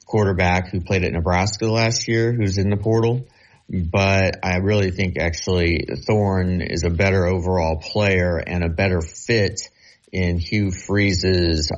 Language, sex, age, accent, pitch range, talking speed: English, male, 30-49, American, 90-110 Hz, 150 wpm